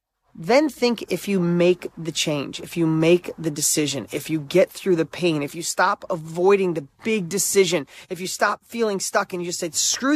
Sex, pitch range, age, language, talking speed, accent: male, 180-230 Hz, 30-49, English, 205 wpm, American